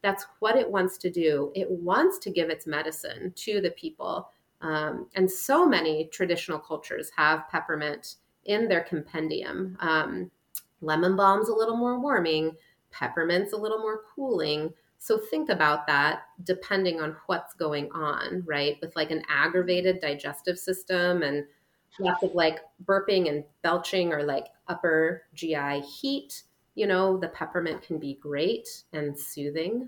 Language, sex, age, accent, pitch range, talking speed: English, female, 30-49, American, 155-195 Hz, 150 wpm